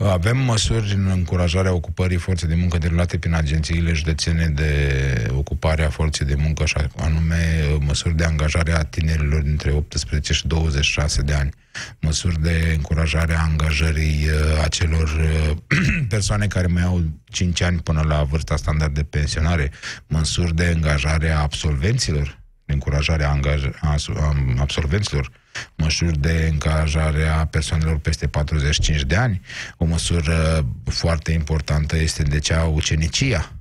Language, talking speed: Romanian, 135 wpm